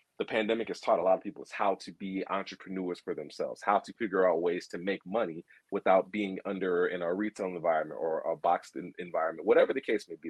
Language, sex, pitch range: English, male, 100-135 Hz